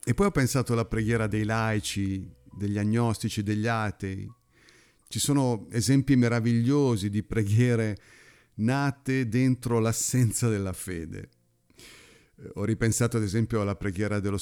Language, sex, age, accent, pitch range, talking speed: Italian, male, 50-69, native, 100-130 Hz, 125 wpm